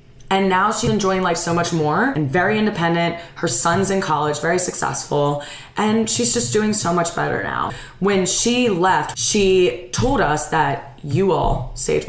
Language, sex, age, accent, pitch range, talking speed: English, female, 20-39, American, 145-190 Hz, 175 wpm